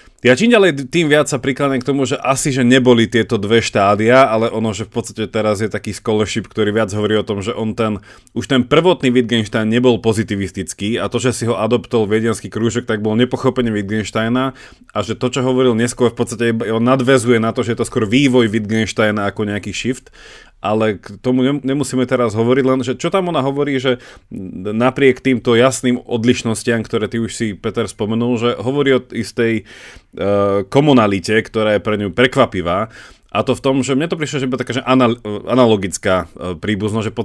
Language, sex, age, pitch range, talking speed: Slovak, male, 30-49, 105-130 Hz, 190 wpm